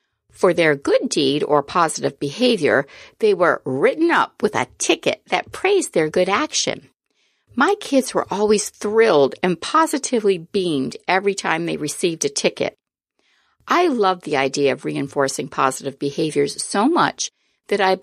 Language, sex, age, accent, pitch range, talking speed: English, female, 50-69, American, 155-245 Hz, 150 wpm